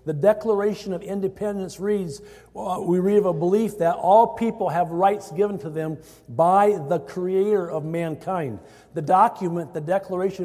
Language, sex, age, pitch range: English, male, 50-69, 180-210 Hz